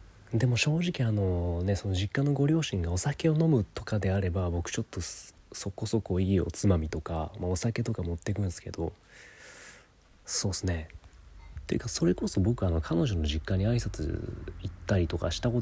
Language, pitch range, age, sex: Japanese, 85-115 Hz, 30-49, male